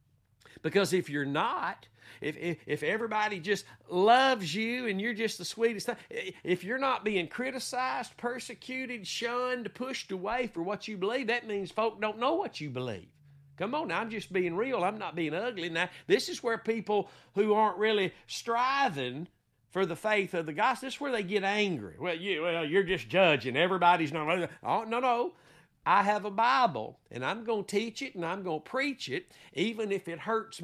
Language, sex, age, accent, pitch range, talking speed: English, male, 50-69, American, 170-230 Hz, 200 wpm